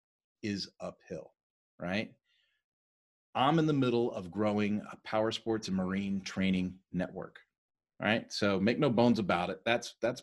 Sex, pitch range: male, 100-120 Hz